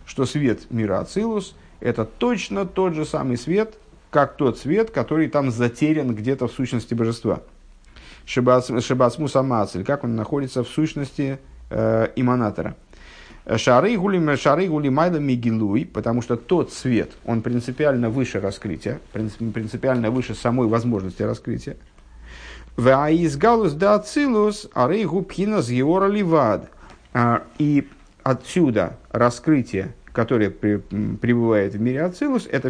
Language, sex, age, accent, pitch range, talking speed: Russian, male, 50-69, native, 115-155 Hz, 90 wpm